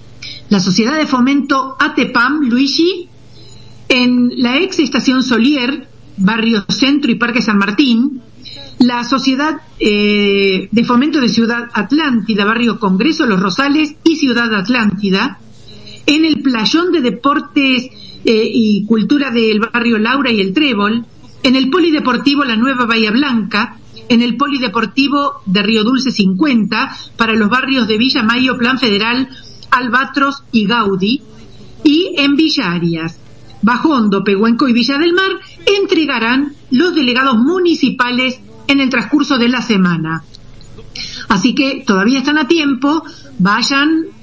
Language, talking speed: Spanish, 135 wpm